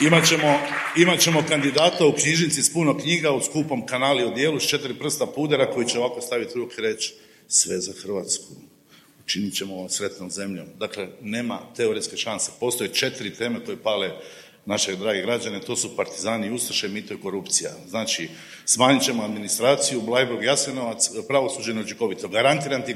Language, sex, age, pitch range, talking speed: Croatian, male, 50-69, 125-165 Hz, 155 wpm